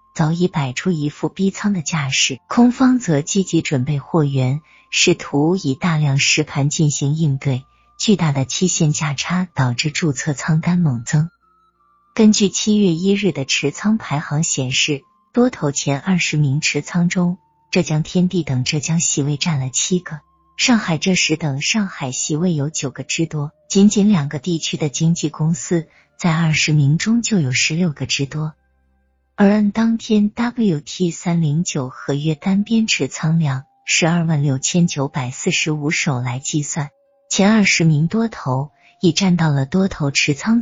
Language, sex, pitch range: Chinese, female, 145-185 Hz